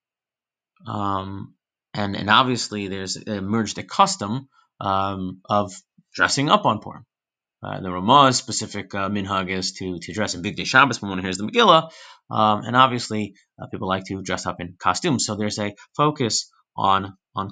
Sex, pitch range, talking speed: male, 105-130 Hz, 170 wpm